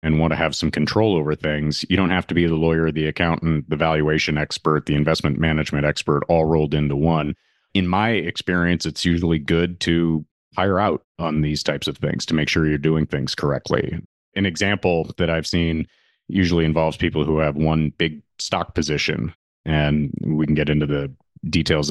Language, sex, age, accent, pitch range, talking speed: English, male, 30-49, American, 75-85 Hz, 190 wpm